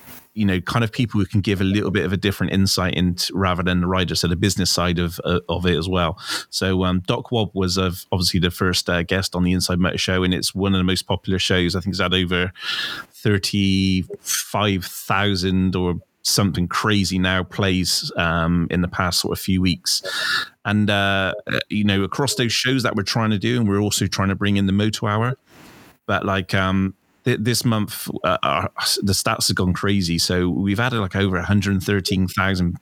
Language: English